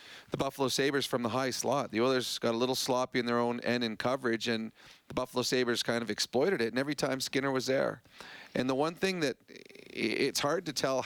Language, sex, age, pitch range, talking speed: English, male, 40-59, 120-140 Hz, 230 wpm